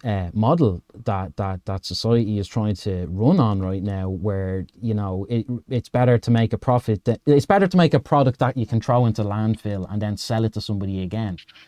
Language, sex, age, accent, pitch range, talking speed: English, male, 20-39, Irish, 100-115 Hz, 220 wpm